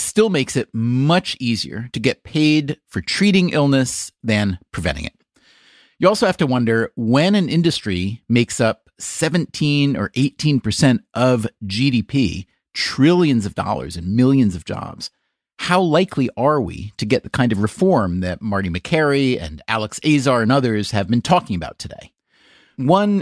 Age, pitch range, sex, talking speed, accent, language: 40-59, 110-145 Hz, male, 155 wpm, American, English